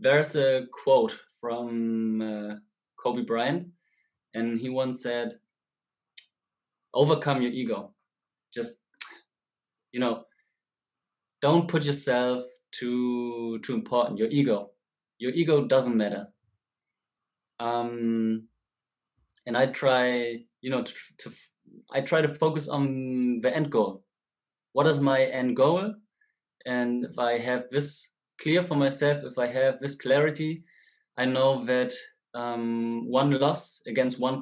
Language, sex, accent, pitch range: English, male, German, 120-140 Hz